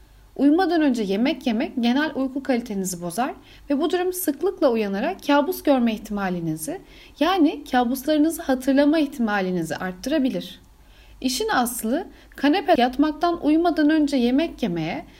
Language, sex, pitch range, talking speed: Turkish, female, 220-305 Hz, 115 wpm